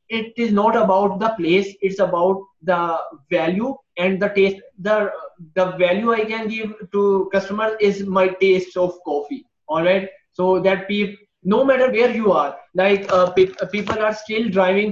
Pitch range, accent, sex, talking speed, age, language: 185-215 Hz, Indian, male, 170 wpm, 20-39, English